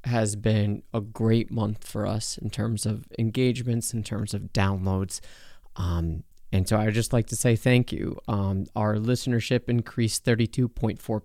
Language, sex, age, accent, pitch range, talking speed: English, male, 30-49, American, 105-125 Hz, 160 wpm